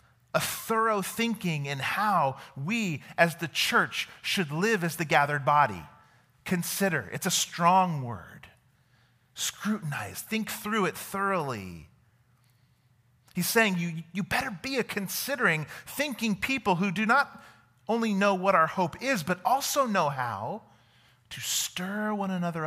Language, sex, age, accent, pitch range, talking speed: English, male, 40-59, American, 125-195 Hz, 140 wpm